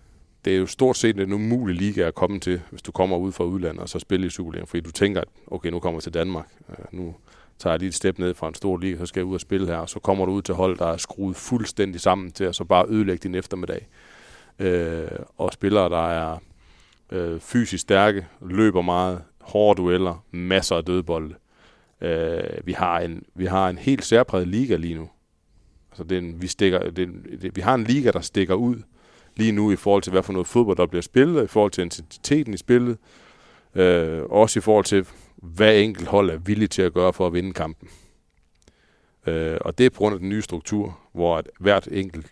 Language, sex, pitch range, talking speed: Danish, male, 85-100 Hz, 215 wpm